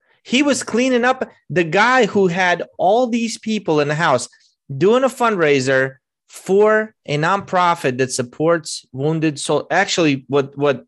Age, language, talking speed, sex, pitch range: 30-49, English, 150 wpm, male, 125-170 Hz